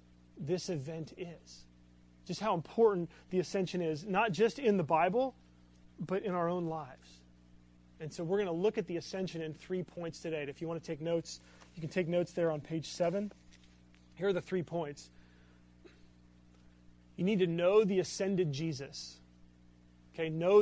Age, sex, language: 30-49, male, English